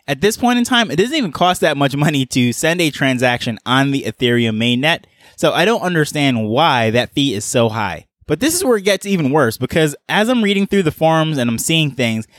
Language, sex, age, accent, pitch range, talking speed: English, male, 20-39, American, 125-165 Hz, 235 wpm